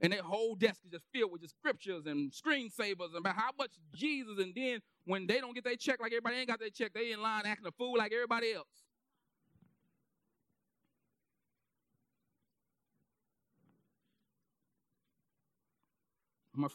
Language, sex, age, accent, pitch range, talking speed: English, male, 40-59, American, 175-230 Hz, 145 wpm